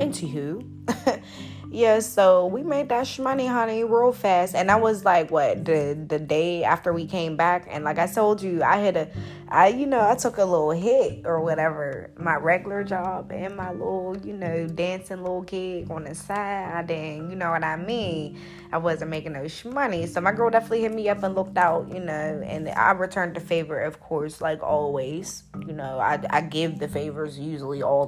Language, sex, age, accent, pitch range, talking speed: English, female, 20-39, American, 155-195 Hz, 205 wpm